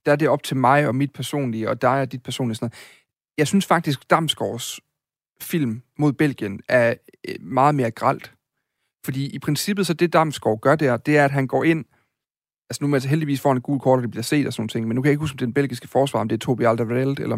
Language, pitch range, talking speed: Danish, 120-150 Hz, 240 wpm